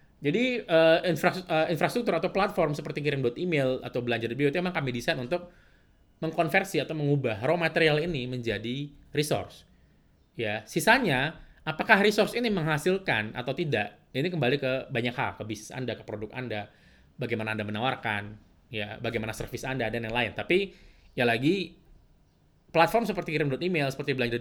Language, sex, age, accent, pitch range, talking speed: Indonesian, male, 20-39, native, 115-155 Hz, 150 wpm